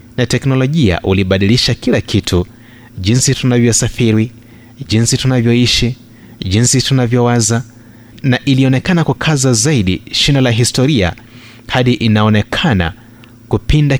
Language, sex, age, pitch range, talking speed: Swahili, male, 30-49, 110-125 Hz, 90 wpm